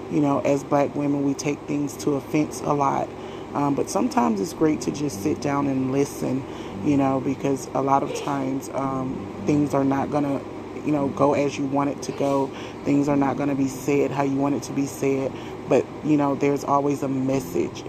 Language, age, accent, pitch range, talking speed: English, 30-49, American, 135-150 Hz, 220 wpm